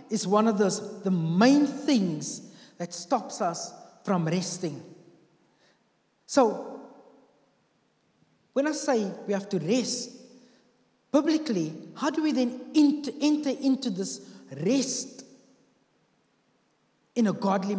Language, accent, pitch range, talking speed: English, South African, 195-260 Hz, 110 wpm